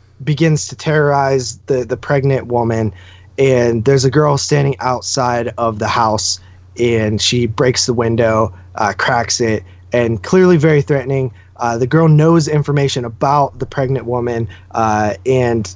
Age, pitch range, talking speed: 20-39, 110-165 Hz, 150 wpm